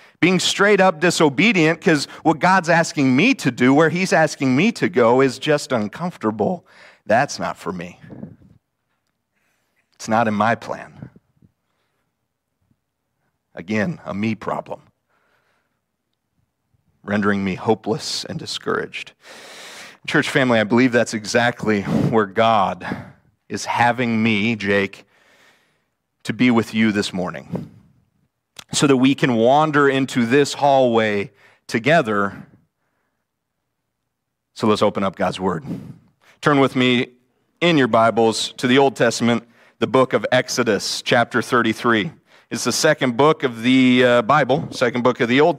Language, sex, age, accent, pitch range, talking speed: English, male, 40-59, American, 110-145 Hz, 130 wpm